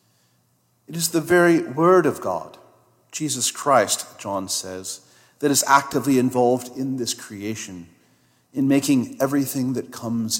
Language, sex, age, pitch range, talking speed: English, male, 40-59, 110-135 Hz, 135 wpm